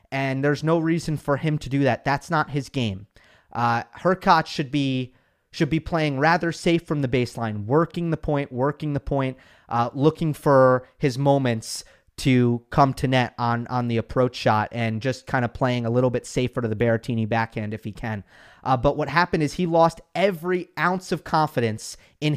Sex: male